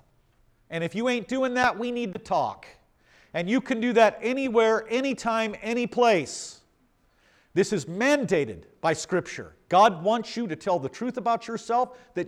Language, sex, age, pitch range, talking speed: English, male, 50-69, 135-205 Hz, 165 wpm